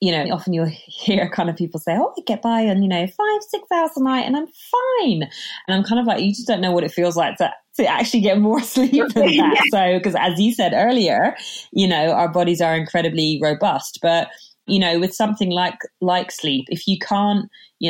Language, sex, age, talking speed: English, female, 20-39, 235 wpm